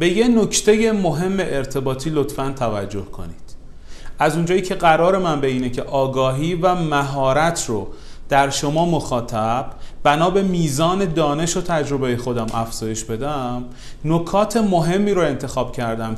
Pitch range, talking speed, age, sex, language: 125-185 Hz, 135 wpm, 30-49, male, Persian